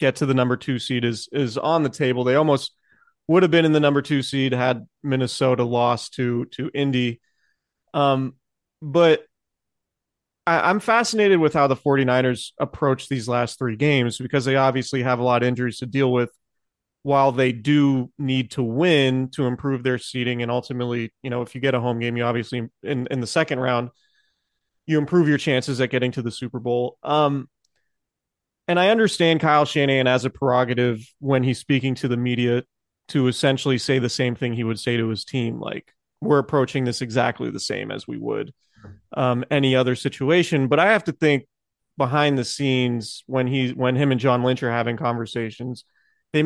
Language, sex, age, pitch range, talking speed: English, male, 30-49, 125-140 Hz, 190 wpm